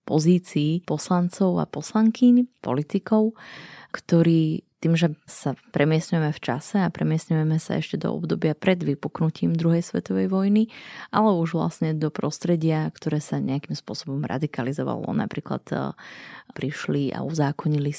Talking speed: 125 wpm